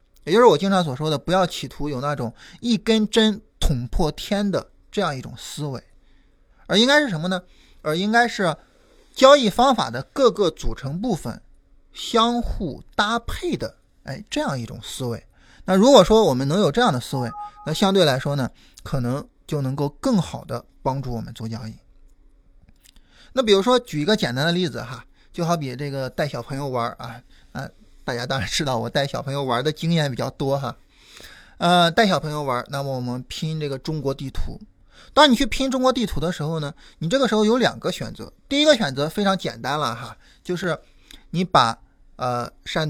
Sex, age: male, 20-39